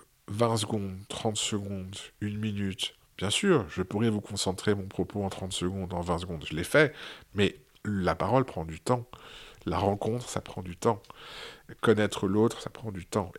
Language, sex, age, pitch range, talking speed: French, male, 50-69, 95-110 Hz, 185 wpm